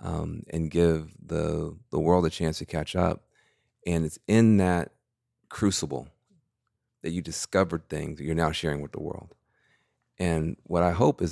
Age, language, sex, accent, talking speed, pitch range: 40-59, English, male, American, 170 wpm, 80-100 Hz